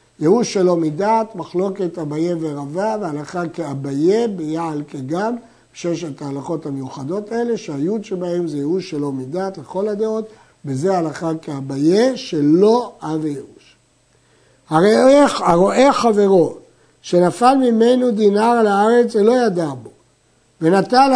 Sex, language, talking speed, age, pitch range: male, Hebrew, 110 wpm, 60-79, 160-220 Hz